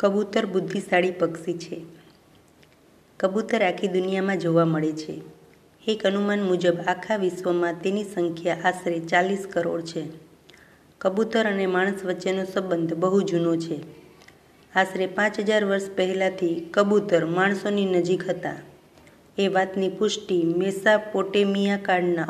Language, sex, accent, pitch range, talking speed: Gujarati, female, native, 175-205 Hz, 110 wpm